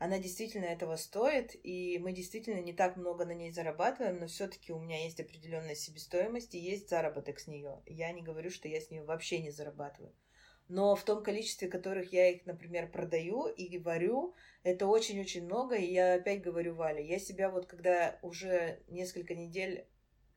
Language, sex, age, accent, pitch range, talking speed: Russian, female, 20-39, native, 165-195 Hz, 180 wpm